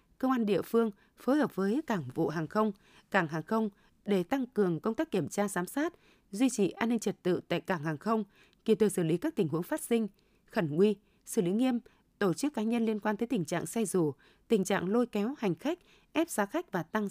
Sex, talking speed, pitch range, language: female, 240 wpm, 180-235 Hz, Vietnamese